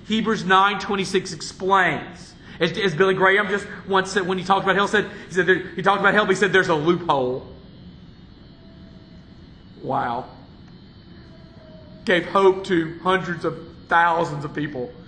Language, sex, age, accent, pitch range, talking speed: English, male, 40-59, American, 170-210 Hz, 160 wpm